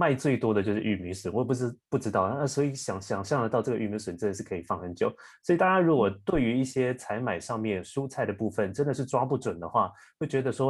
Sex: male